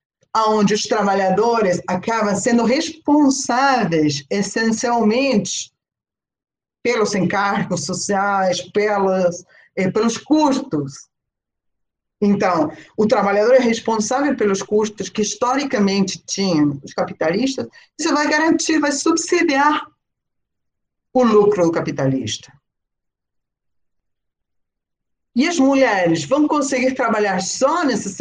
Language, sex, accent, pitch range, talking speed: Portuguese, female, Brazilian, 180-245 Hz, 90 wpm